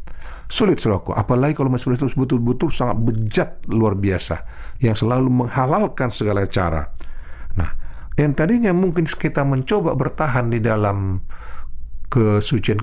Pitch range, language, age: 95-140 Hz, Indonesian, 50-69